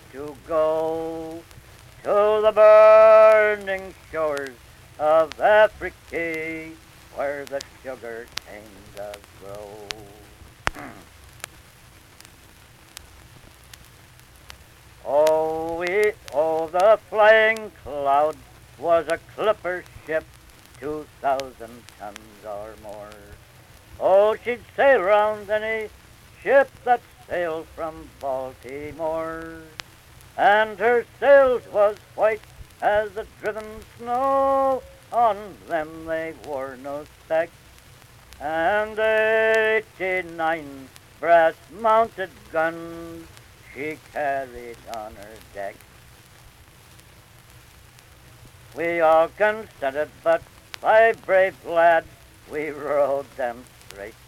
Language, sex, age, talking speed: English, male, 60-79, 80 wpm